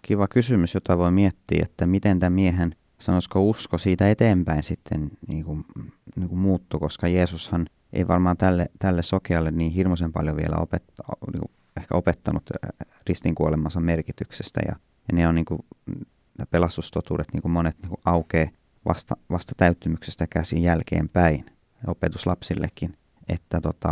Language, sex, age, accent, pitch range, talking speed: Finnish, male, 20-39, native, 80-100 Hz, 140 wpm